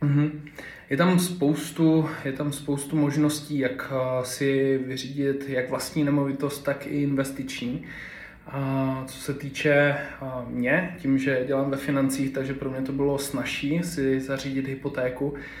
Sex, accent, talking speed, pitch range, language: male, native, 125 wpm, 135-150 Hz, Czech